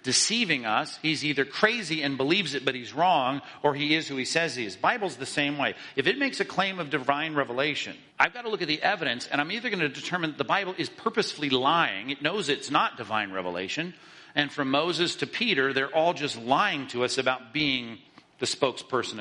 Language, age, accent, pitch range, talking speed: English, 50-69, American, 130-165 Hz, 220 wpm